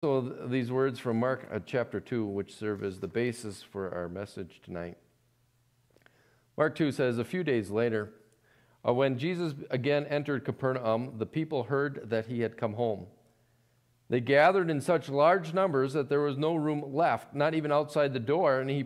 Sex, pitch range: male, 120-160 Hz